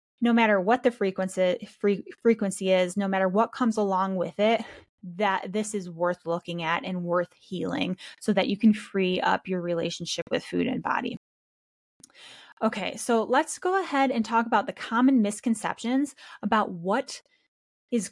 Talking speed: 165 wpm